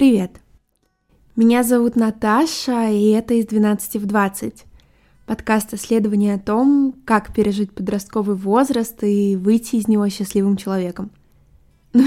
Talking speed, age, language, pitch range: 125 wpm, 20-39, Russian, 195-230 Hz